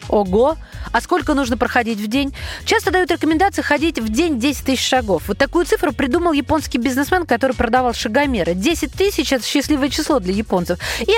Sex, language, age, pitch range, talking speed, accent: female, Russian, 20-39, 225-310 Hz, 185 wpm, native